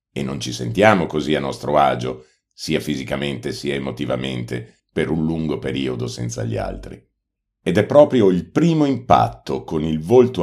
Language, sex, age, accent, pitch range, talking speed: Italian, male, 50-69, native, 70-105 Hz, 160 wpm